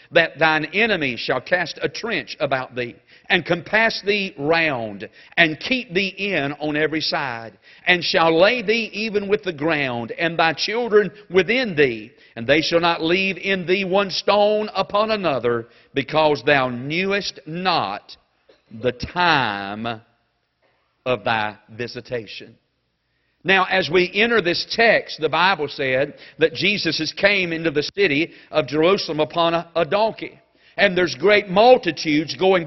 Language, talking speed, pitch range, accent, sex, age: English, 145 wpm, 150-205 Hz, American, male, 50-69